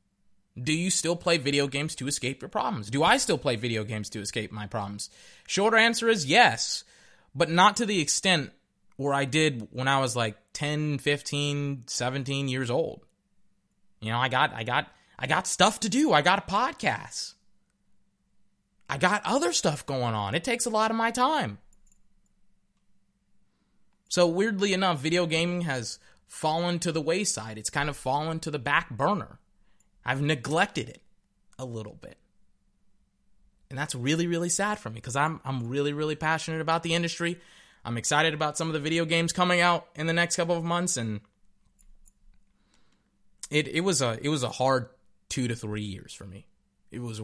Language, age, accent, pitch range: English, 20-39, American, 110-165 Hz